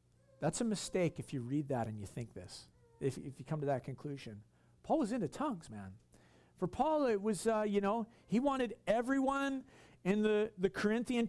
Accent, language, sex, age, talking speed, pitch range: American, English, male, 50-69, 195 wpm, 145-215 Hz